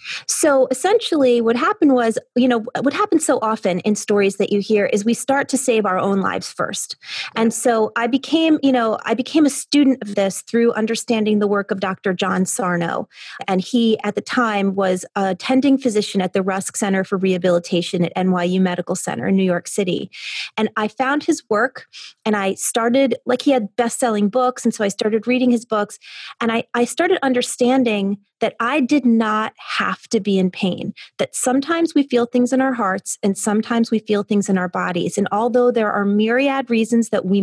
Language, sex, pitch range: English, female, 200-250 Hz